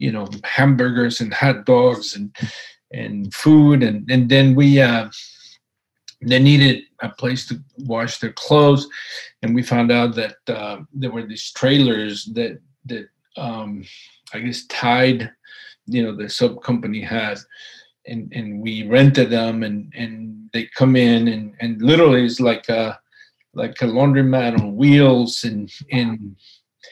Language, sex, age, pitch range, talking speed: English, male, 50-69, 110-135 Hz, 150 wpm